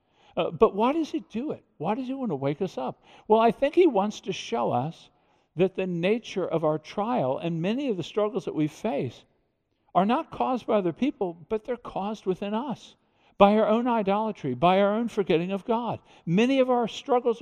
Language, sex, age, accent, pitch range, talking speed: English, male, 60-79, American, 165-225 Hz, 215 wpm